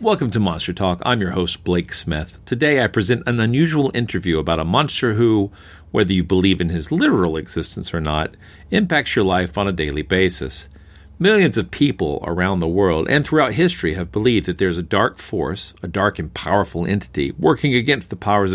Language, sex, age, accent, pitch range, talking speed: English, male, 50-69, American, 90-110 Hz, 195 wpm